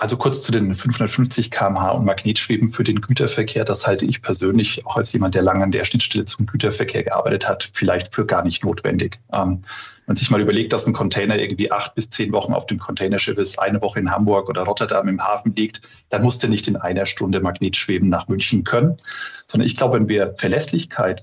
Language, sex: German, male